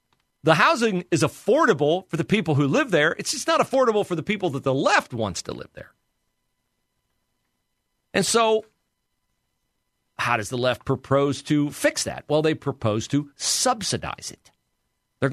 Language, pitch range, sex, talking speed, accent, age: English, 115-155 Hz, male, 160 wpm, American, 50-69